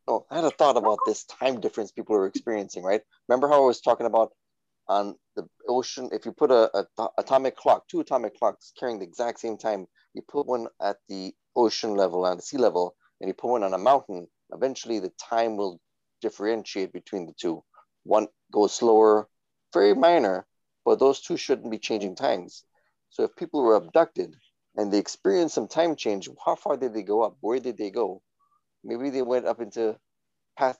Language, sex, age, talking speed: English, male, 30-49, 200 wpm